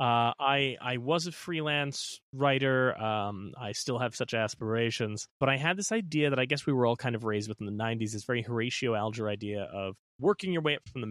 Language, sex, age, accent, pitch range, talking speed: English, male, 20-39, American, 110-135 Hz, 230 wpm